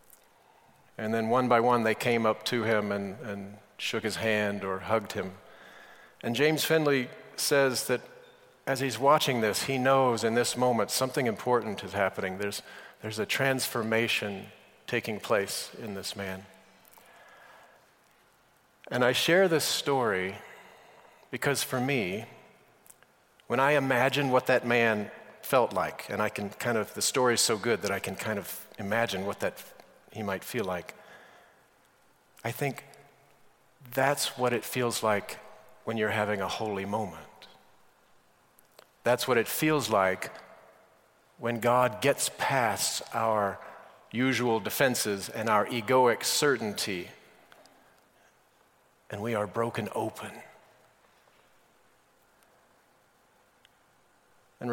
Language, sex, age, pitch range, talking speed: English, male, 40-59, 105-130 Hz, 130 wpm